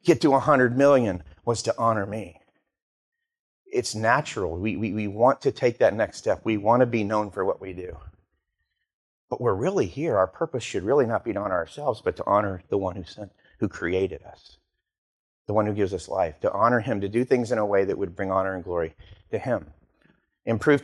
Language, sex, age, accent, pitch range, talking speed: English, male, 40-59, American, 95-120 Hz, 215 wpm